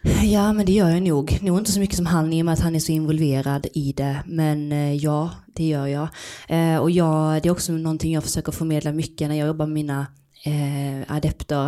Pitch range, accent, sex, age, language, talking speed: 155-180 Hz, native, female, 20-39, Swedish, 225 wpm